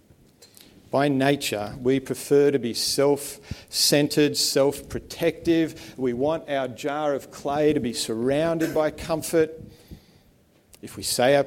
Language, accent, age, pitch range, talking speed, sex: English, Australian, 50-69, 120-150 Hz, 120 wpm, male